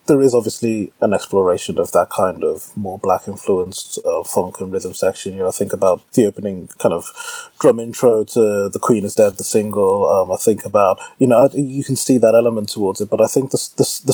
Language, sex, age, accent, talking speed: English, male, 20-39, British, 225 wpm